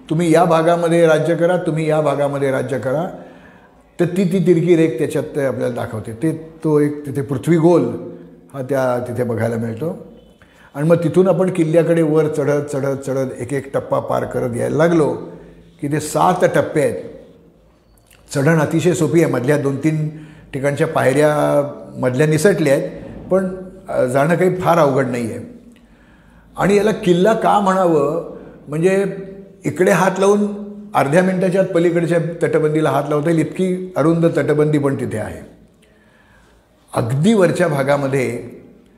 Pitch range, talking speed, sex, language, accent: 140-180 Hz, 140 wpm, male, Marathi, native